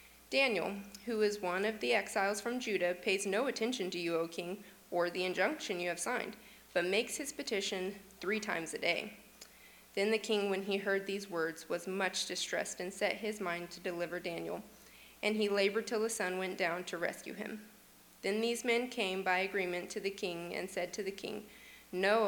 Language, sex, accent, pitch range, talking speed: English, female, American, 180-215 Hz, 200 wpm